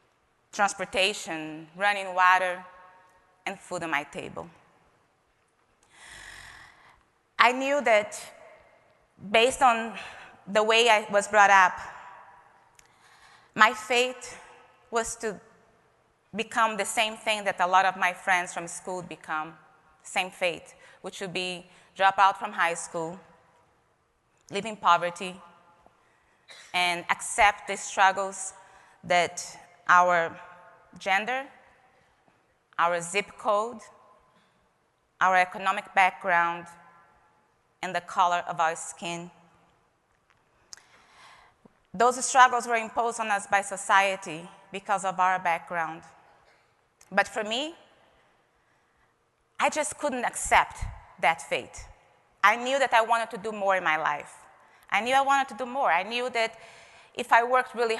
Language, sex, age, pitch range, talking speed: English, female, 20-39, 180-225 Hz, 120 wpm